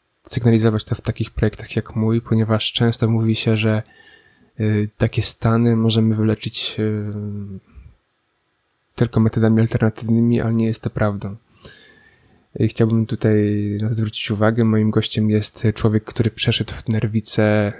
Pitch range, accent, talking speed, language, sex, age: 105-115 Hz, native, 120 wpm, Polish, male, 20-39